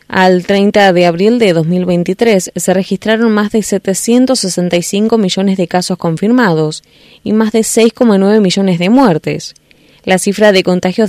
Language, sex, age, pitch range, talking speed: Spanish, female, 20-39, 175-215 Hz, 140 wpm